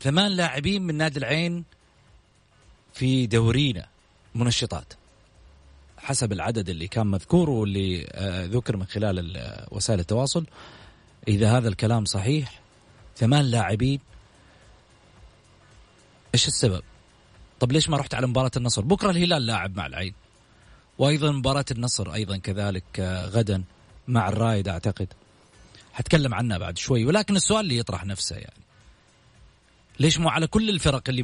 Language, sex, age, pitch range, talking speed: Arabic, male, 30-49, 100-145 Hz, 125 wpm